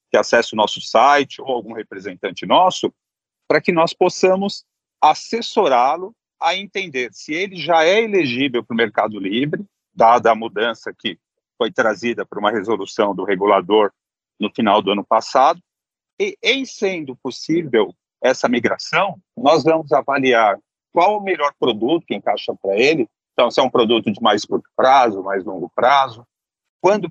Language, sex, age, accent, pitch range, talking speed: Portuguese, male, 40-59, Brazilian, 120-180 Hz, 155 wpm